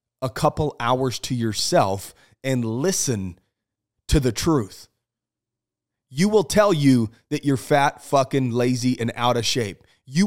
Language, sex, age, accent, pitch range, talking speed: English, male, 30-49, American, 115-150 Hz, 140 wpm